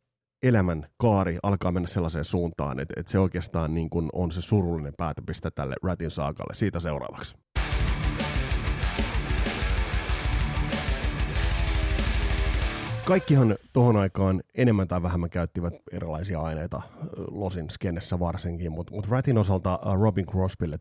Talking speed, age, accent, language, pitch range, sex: 110 wpm, 30-49, native, Finnish, 85-105 Hz, male